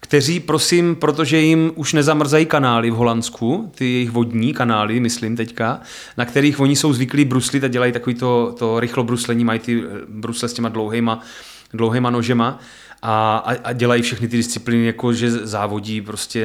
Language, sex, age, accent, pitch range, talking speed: Czech, male, 30-49, native, 115-135 Hz, 160 wpm